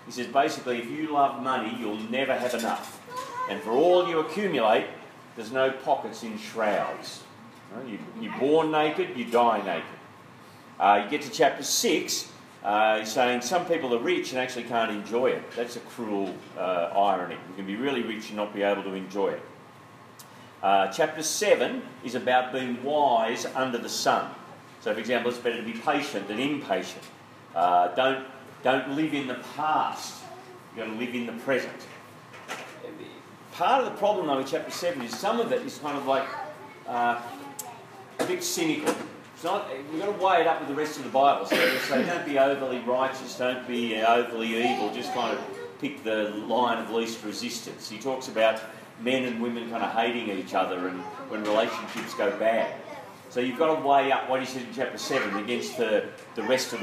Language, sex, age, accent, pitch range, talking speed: English, male, 40-59, Australian, 115-145 Hz, 190 wpm